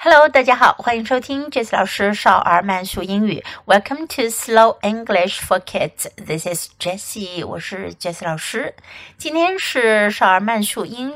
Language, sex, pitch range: Chinese, female, 180-280 Hz